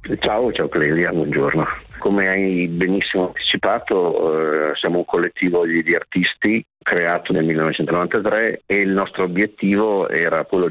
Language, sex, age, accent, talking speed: Italian, male, 50-69, native, 125 wpm